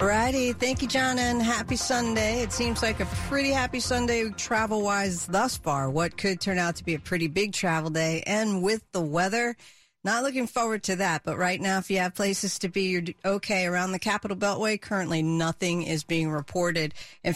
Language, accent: English, American